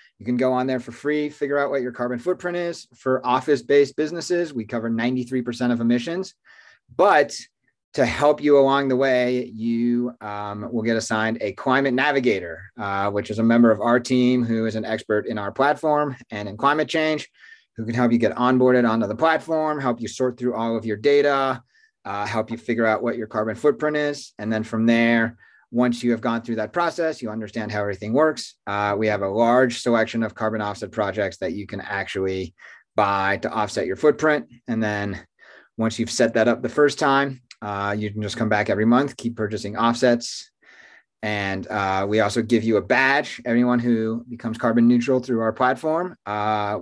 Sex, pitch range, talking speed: male, 110-130 Hz, 200 wpm